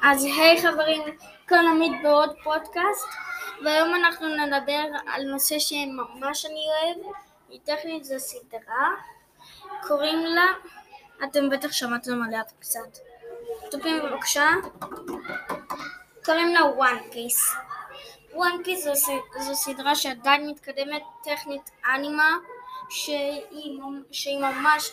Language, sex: Hebrew, female